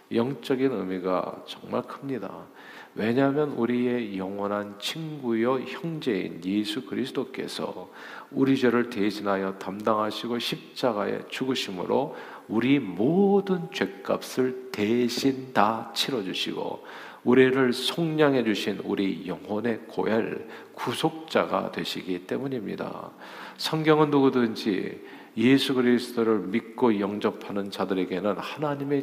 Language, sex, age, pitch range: Korean, male, 50-69, 110-155 Hz